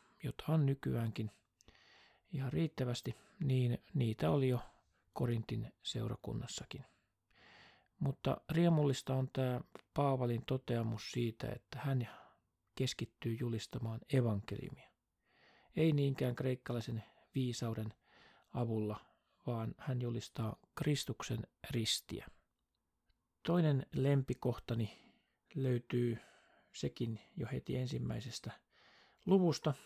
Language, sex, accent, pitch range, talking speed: Finnish, male, native, 115-140 Hz, 80 wpm